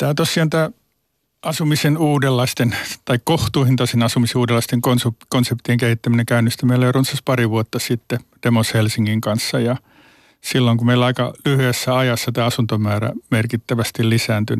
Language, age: Finnish, 50-69